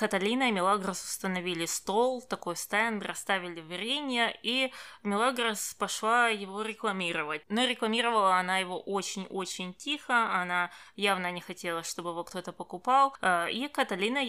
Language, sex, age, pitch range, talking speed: Russian, female, 20-39, 185-230 Hz, 125 wpm